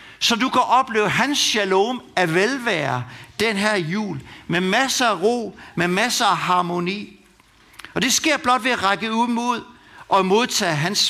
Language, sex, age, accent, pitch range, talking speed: Danish, male, 60-79, native, 175-235 Hz, 170 wpm